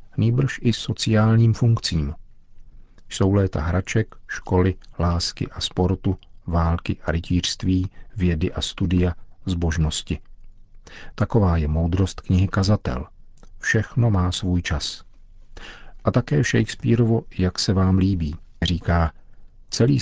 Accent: native